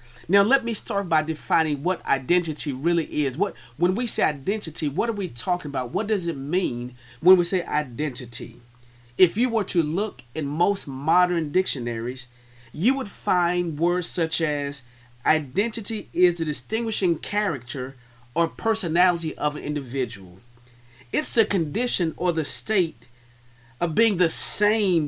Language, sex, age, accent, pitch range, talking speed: English, male, 30-49, American, 125-195 Hz, 150 wpm